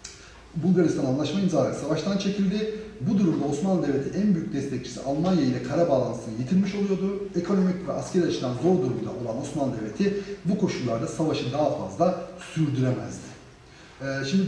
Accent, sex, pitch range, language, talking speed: native, male, 135-185 Hz, Turkish, 140 wpm